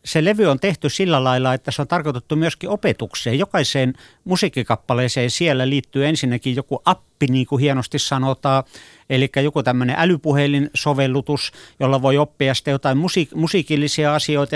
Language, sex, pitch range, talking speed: Finnish, male, 125-145 Hz, 150 wpm